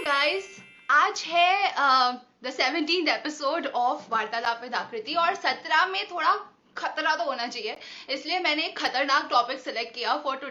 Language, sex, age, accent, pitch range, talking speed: Hindi, female, 20-39, native, 245-335 Hz, 145 wpm